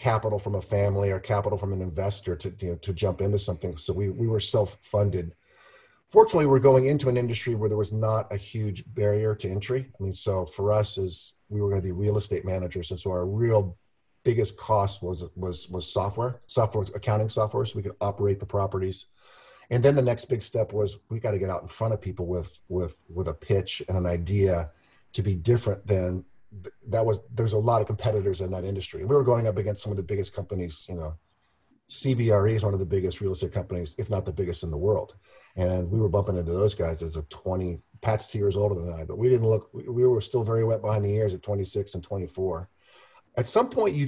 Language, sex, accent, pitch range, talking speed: English, male, American, 95-115 Hz, 235 wpm